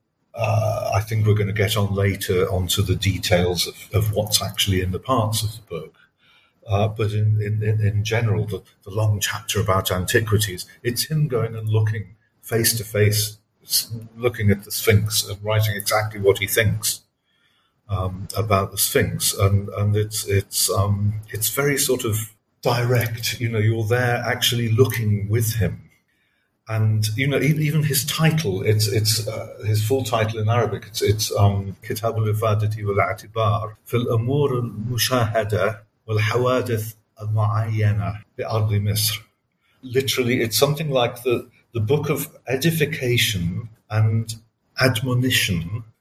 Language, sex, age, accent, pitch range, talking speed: English, male, 50-69, British, 105-120 Hz, 145 wpm